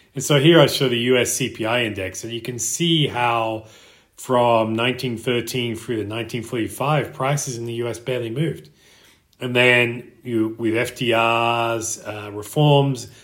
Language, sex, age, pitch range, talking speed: English, male, 30-49, 110-130 Hz, 145 wpm